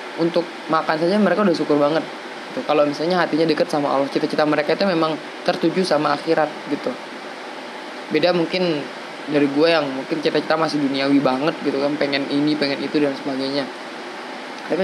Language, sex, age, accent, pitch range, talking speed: Indonesian, female, 20-39, native, 145-165 Hz, 160 wpm